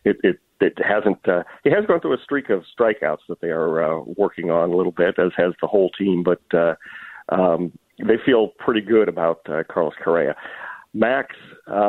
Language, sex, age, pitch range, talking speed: English, male, 40-59, 90-105 Hz, 195 wpm